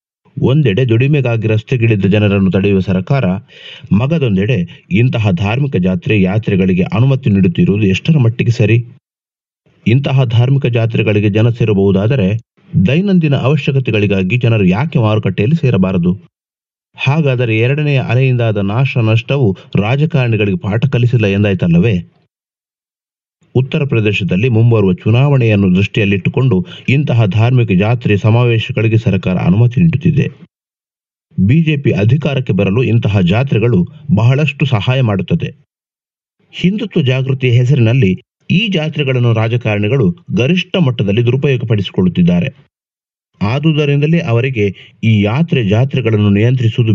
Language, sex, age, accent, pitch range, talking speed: Kannada, male, 30-49, native, 105-140 Hz, 90 wpm